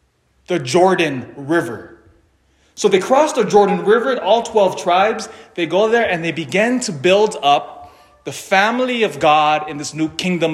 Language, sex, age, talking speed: English, male, 30-49, 165 wpm